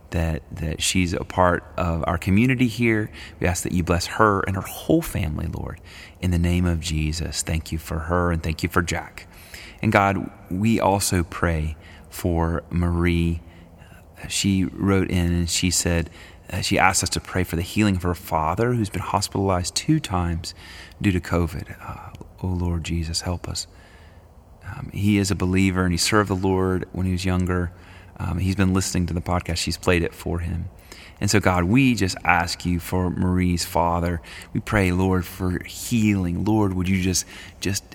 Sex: male